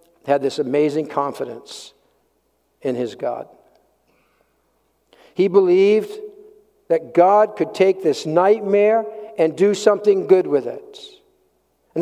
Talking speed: 110 wpm